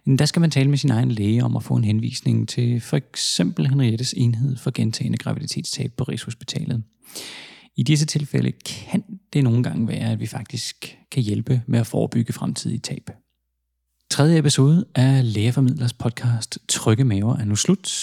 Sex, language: male, Danish